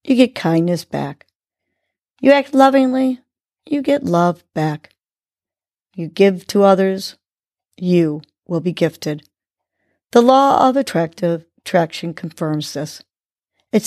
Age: 50-69